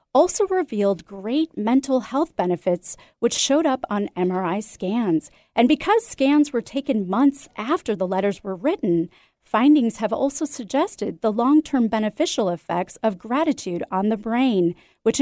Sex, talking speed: female, 145 wpm